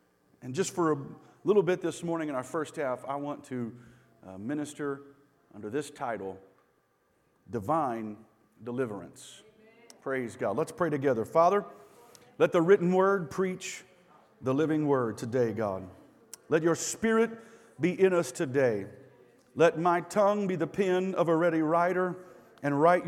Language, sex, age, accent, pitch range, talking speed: English, male, 50-69, American, 140-200 Hz, 150 wpm